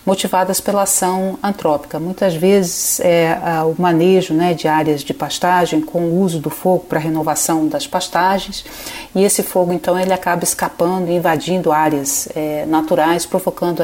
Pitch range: 165-190 Hz